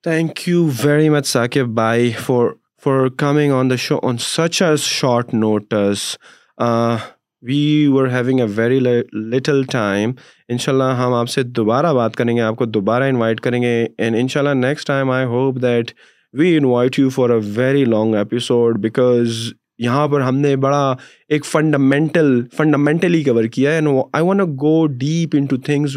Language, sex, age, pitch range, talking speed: Urdu, male, 20-39, 115-145 Hz, 160 wpm